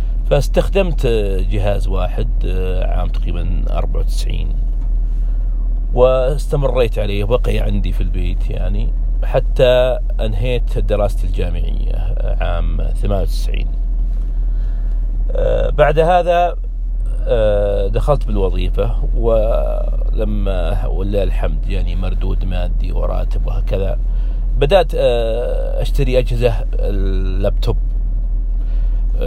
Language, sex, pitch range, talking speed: Arabic, male, 100-120 Hz, 70 wpm